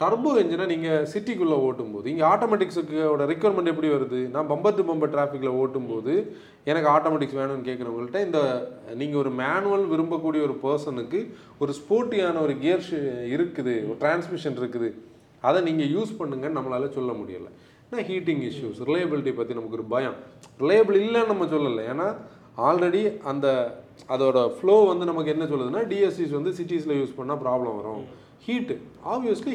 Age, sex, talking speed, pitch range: 30-49, male, 150 wpm, 135-185 Hz